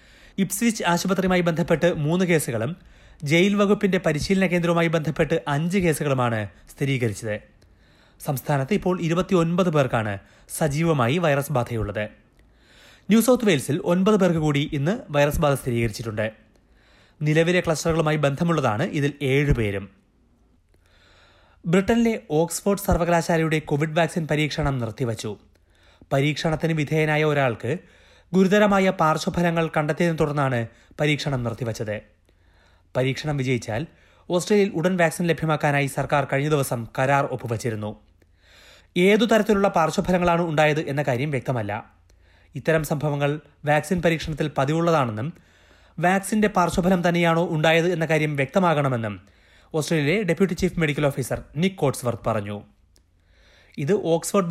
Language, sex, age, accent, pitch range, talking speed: Malayalam, male, 30-49, native, 115-170 Hz, 95 wpm